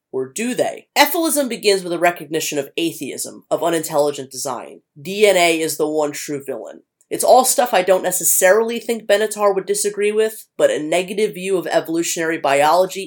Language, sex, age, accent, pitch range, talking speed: English, female, 30-49, American, 150-205 Hz, 170 wpm